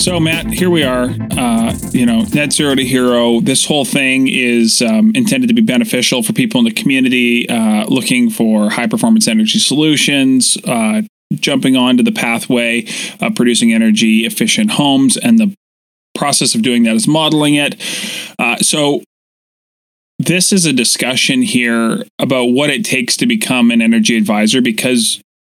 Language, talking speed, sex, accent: English, 165 wpm, male, American